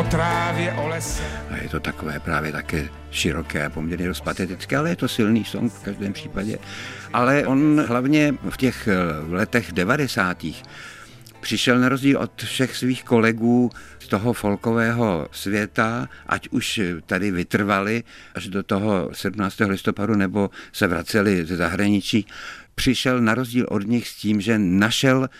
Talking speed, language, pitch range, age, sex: 135 wpm, Czech, 95-115 Hz, 60-79, male